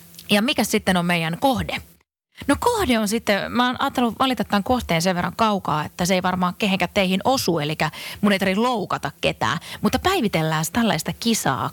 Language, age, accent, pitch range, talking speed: Finnish, 30-49, native, 160-215 Hz, 175 wpm